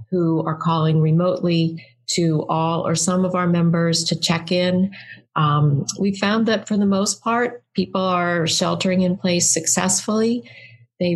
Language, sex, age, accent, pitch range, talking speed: English, female, 40-59, American, 165-200 Hz, 155 wpm